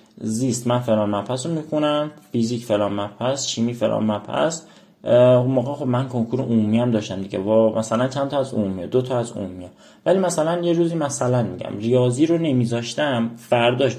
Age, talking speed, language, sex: 30-49, 175 wpm, Persian, male